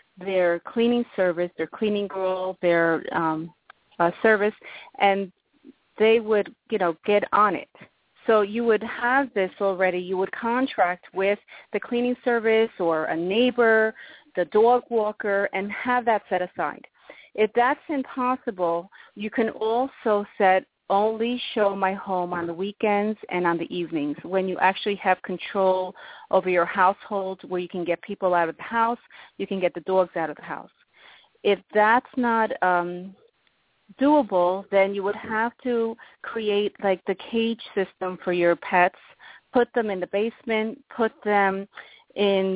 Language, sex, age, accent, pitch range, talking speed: English, female, 40-59, American, 185-225 Hz, 160 wpm